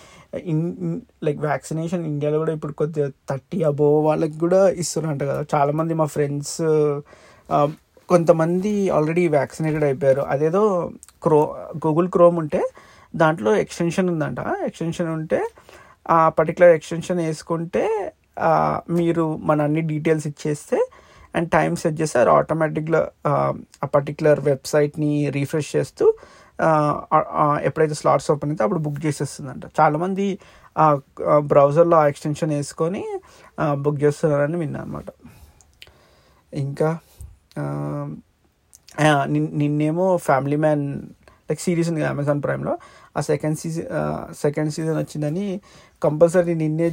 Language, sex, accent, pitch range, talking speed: Telugu, male, native, 145-170 Hz, 100 wpm